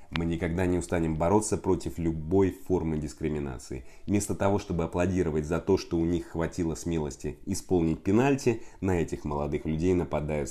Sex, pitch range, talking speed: male, 80-100 Hz, 155 wpm